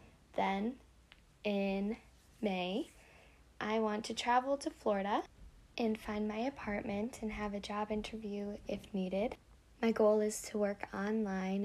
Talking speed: 135 wpm